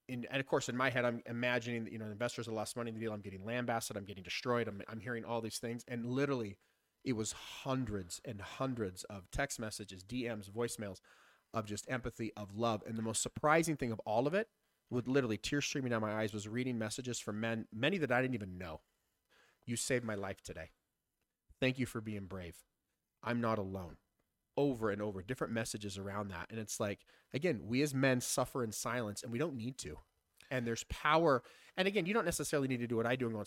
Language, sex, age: English, male, 30-49